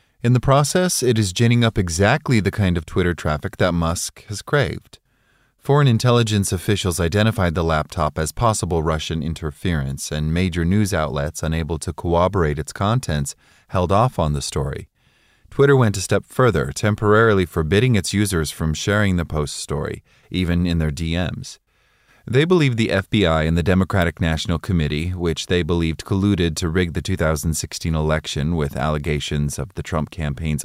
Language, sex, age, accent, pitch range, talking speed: English, male, 30-49, American, 80-105 Hz, 165 wpm